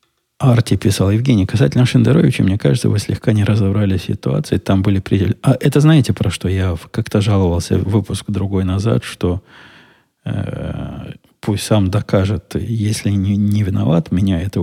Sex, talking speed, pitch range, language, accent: male, 155 wpm, 95-115 Hz, Russian, native